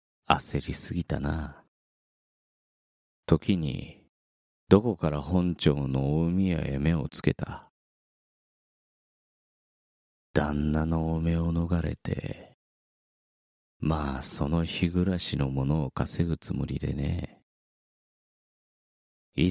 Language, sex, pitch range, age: Japanese, male, 75-90 Hz, 30-49